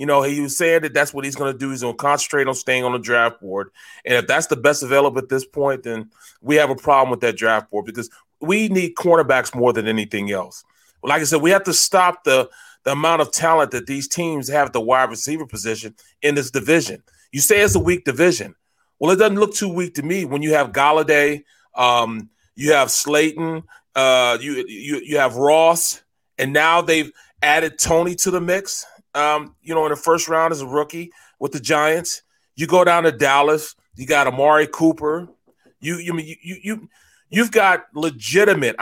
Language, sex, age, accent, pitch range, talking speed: English, male, 30-49, American, 135-170 Hz, 215 wpm